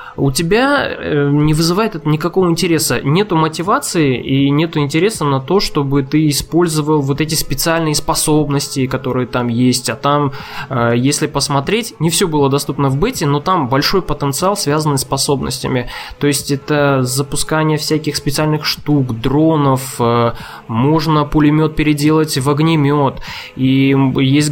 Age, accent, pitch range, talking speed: 20-39, native, 130-155 Hz, 135 wpm